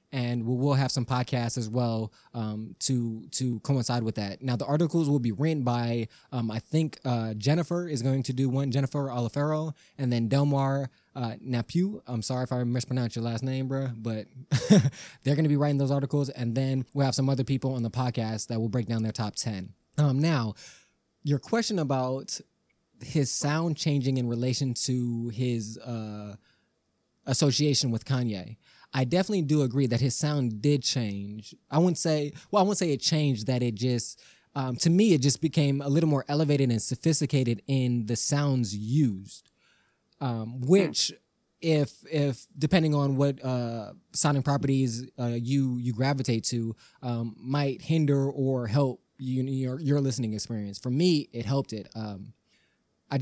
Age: 20-39